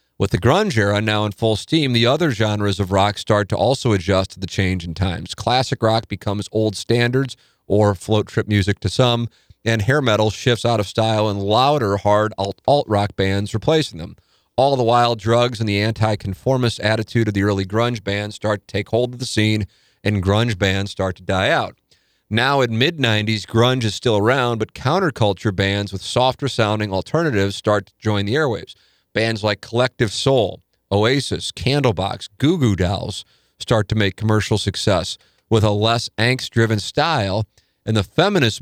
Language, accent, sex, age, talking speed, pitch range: English, American, male, 40-59, 175 wpm, 100-120 Hz